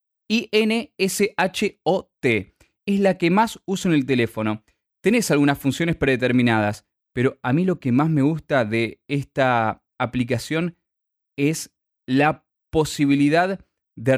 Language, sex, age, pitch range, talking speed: Spanish, male, 20-39, 130-170 Hz, 120 wpm